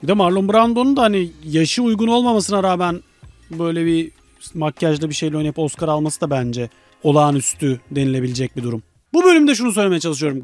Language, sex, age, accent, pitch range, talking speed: Turkish, male, 40-59, native, 150-235 Hz, 160 wpm